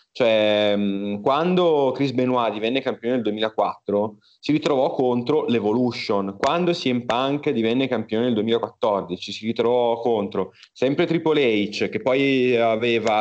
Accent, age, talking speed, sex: native, 30-49, 125 wpm, male